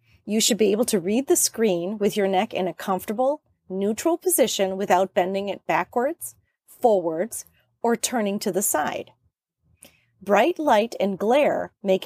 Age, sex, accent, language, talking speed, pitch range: 30-49, female, American, English, 155 wpm, 190-245 Hz